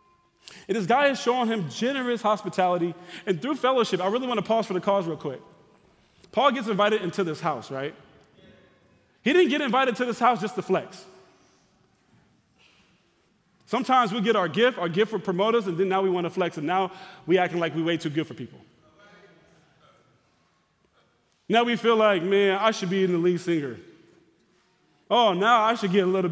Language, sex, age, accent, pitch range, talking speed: English, male, 20-39, American, 175-225 Hz, 190 wpm